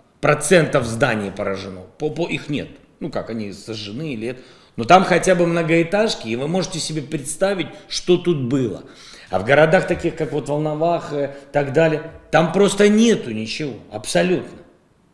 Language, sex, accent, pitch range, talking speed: Russian, male, native, 115-170 Hz, 155 wpm